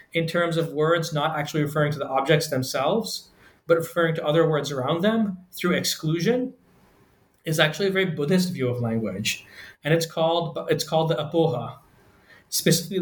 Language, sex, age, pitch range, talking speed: English, male, 30-49, 135-165 Hz, 165 wpm